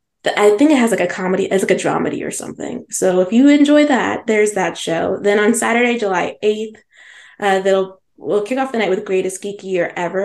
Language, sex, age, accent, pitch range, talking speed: English, female, 20-39, American, 185-230 Hz, 225 wpm